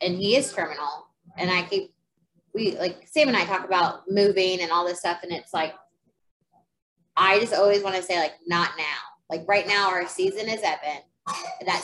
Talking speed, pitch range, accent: 200 wpm, 170-205 Hz, American